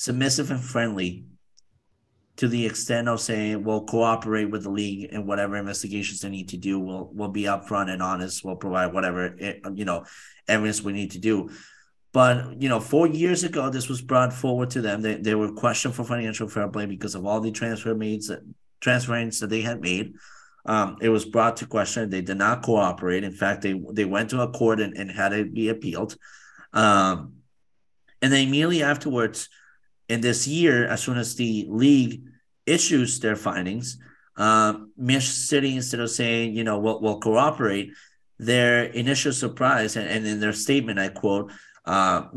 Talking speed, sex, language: 185 wpm, male, English